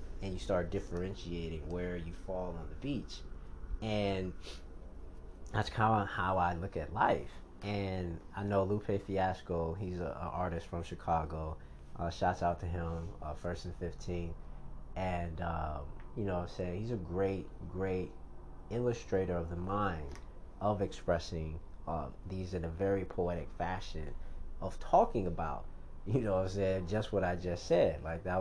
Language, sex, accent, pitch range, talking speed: English, male, American, 80-100 Hz, 160 wpm